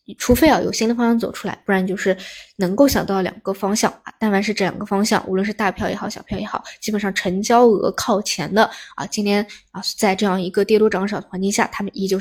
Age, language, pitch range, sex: 20-39, Chinese, 185-210 Hz, female